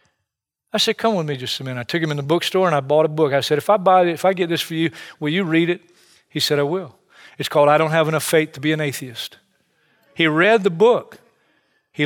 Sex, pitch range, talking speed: male, 150-205 Hz, 275 wpm